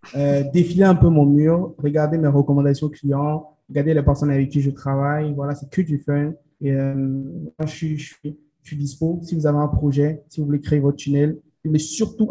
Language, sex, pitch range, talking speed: French, male, 145-160 Hz, 220 wpm